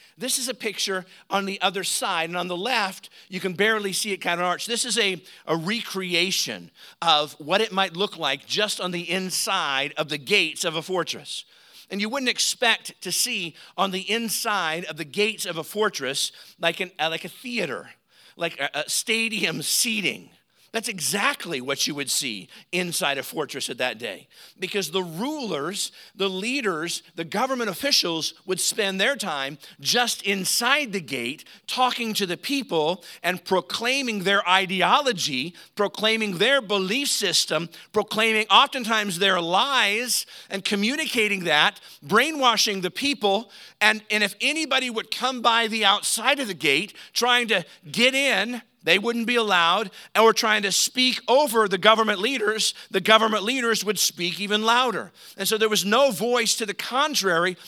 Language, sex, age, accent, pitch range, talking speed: English, male, 50-69, American, 180-230 Hz, 165 wpm